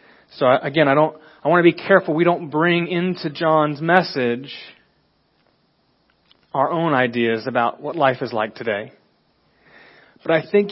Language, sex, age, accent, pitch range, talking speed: English, male, 30-49, American, 140-170 Hz, 150 wpm